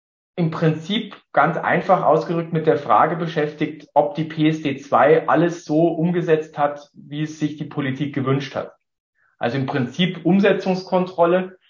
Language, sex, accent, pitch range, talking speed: English, male, German, 140-170 Hz, 145 wpm